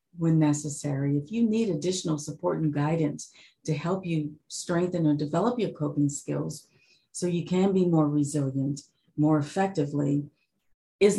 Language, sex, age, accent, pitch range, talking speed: English, female, 40-59, American, 145-170 Hz, 145 wpm